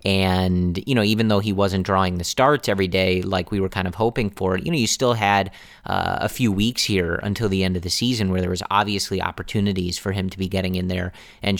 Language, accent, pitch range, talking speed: English, American, 95-110 Hz, 250 wpm